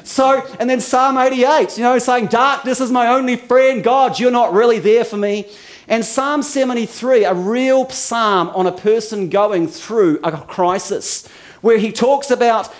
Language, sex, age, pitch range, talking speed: English, male, 40-59, 185-255 Hz, 180 wpm